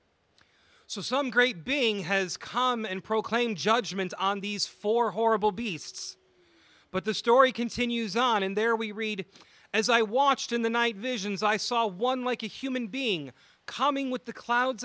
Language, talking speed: English, 165 wpm